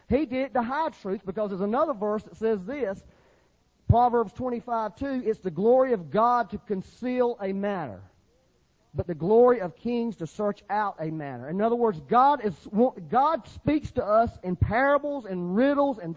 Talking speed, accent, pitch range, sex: 180 wpm, American, 205-280 Hz, male